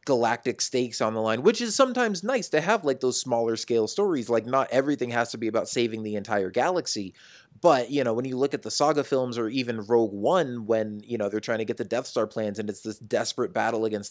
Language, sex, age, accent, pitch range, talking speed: English, male, 20-39, American, 105-135 Hz, 245 wpm